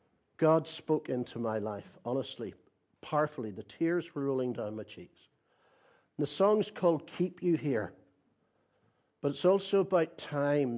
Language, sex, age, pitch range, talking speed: English, male, 60-79, 125-165 Hz, 140 wpm